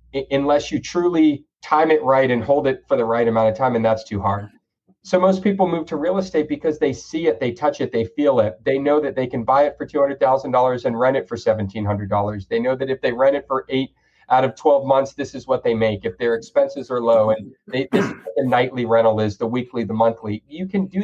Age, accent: 40-59, American